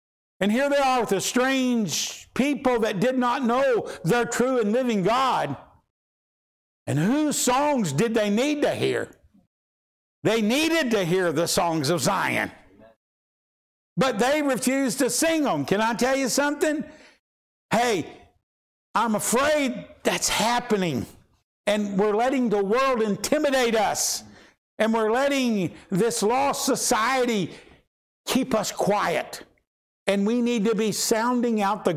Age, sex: 60-79, male